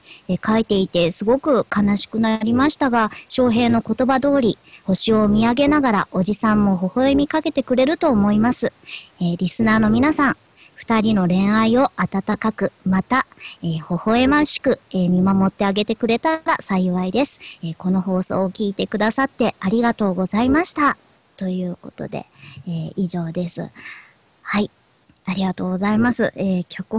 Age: 40-59